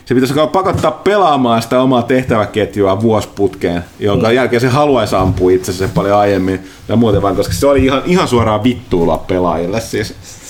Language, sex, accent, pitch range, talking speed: Finnish, male, native, 95-125 Hz, 165 wpm